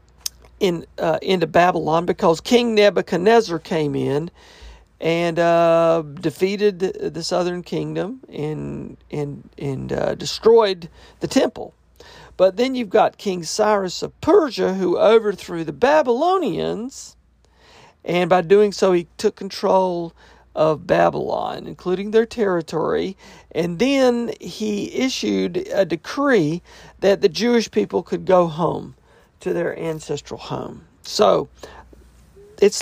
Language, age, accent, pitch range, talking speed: English, 50-69, American, 150-210 Hz, 120 wpm